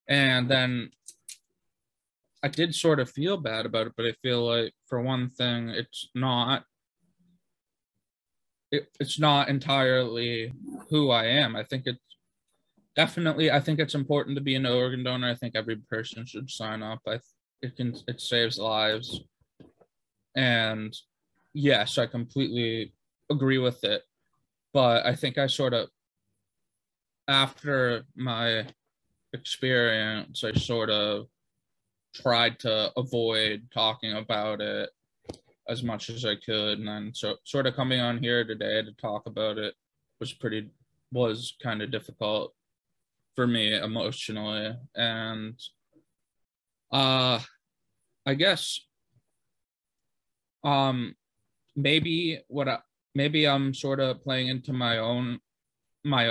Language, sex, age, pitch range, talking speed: English, male, 20-39, 110-135 Hz, 130 wpm